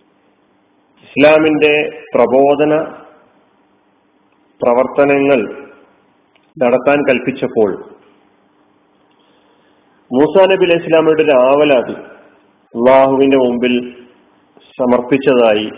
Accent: native